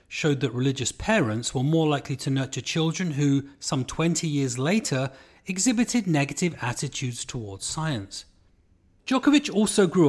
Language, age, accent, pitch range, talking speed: English, 30-49, British, 110-160 Hz, 135 wpm